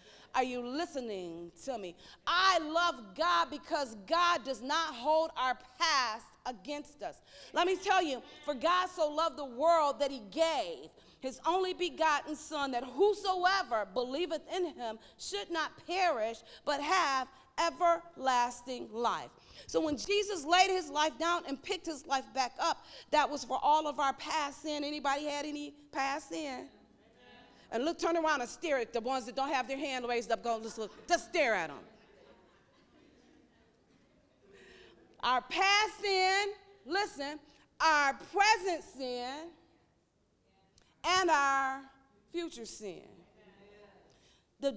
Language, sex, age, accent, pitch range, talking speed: English, female, 40-59, American, 265-350 Hz, 145 wpm